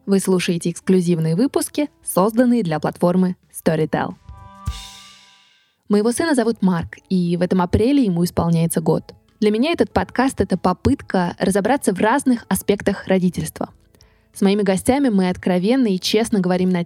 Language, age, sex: Russian, 20-39, female